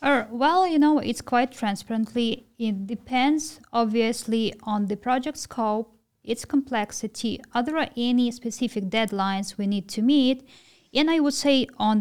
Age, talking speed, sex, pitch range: 20-39, 145 wpm, female, 210-265 Hz